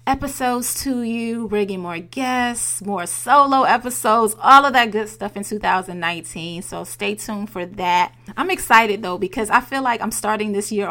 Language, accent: English, American